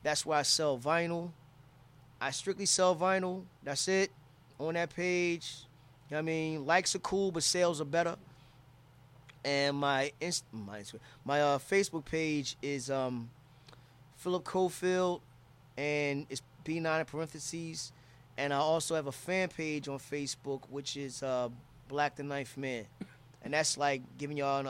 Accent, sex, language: American, male, English